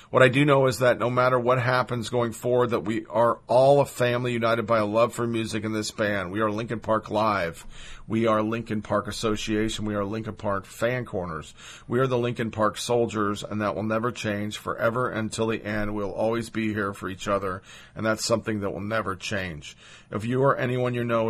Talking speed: 220 wpm